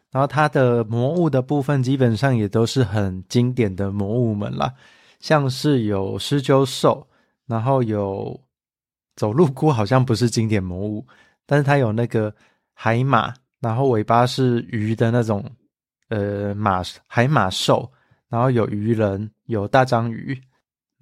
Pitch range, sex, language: 110-135 Hz, male, Chinese